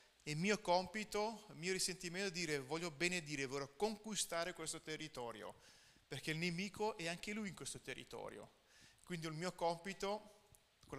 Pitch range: 150-185 Hz